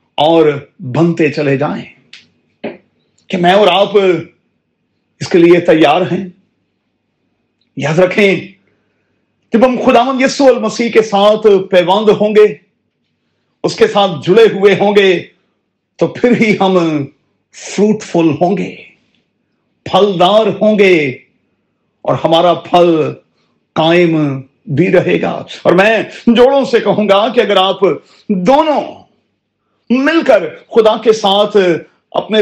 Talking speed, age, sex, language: 125 wpm, 50-69, male, Urdu